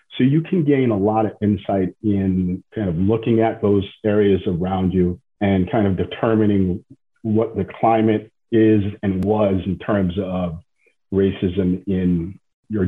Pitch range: 95-115 Hz